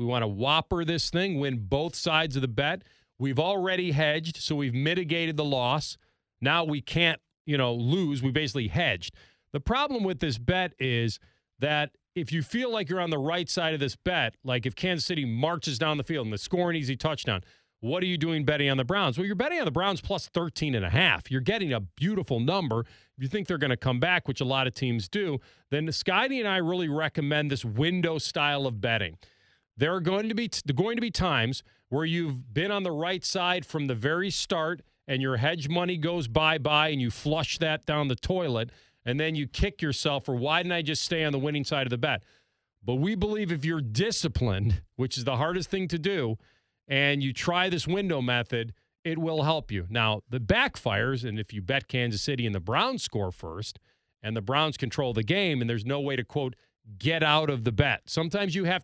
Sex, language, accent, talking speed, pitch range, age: male, English, American, 225 wpm, 125-170 Hz, 40-59